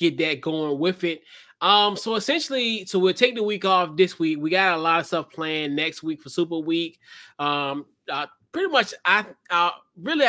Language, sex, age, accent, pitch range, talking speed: English, male, 20-39, American, 145-175 Hz, 205 wpm